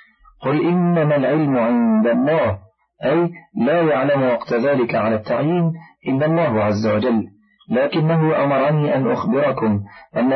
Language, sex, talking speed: Arabic, male, 120 wpm